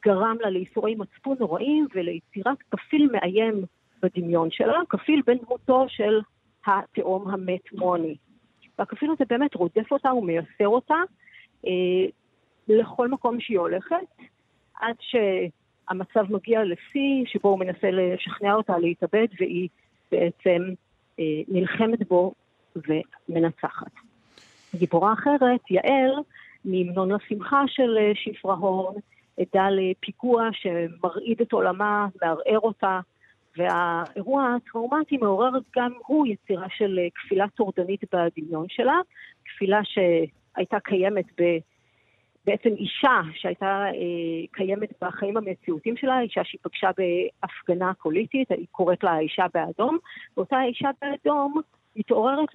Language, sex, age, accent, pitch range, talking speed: Hebrew, female, 50-69, native, 180-235 Hz, 110 wpm